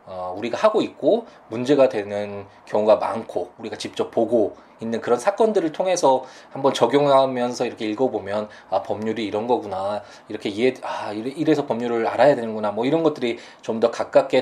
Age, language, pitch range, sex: 20-39, Korean, 110-155 Hz, male